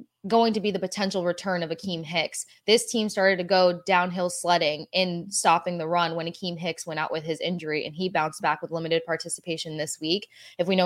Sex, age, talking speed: female, 20-39, 220 wpm